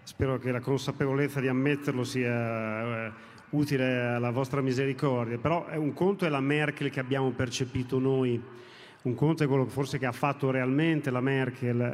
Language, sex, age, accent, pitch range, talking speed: Italian, male, 40-59, native, 130-155 Hz, 175 wpm